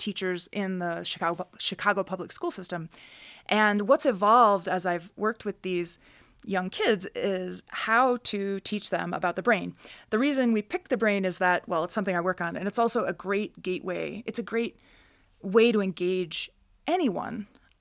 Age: 30-49